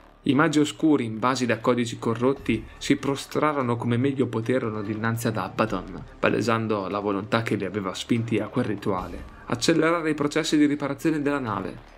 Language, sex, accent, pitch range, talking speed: Italian, male, native, 110-135 Hz, 165 wpm